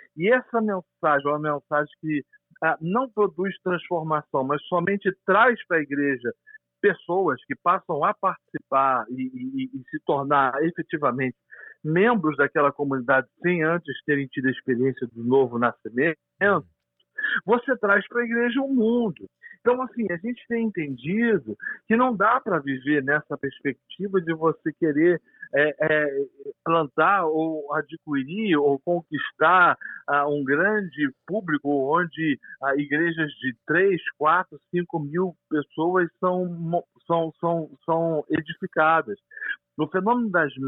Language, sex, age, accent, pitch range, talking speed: Portuguese, male, 50-69, Brazilian, 145-205 Hz, 130 wpm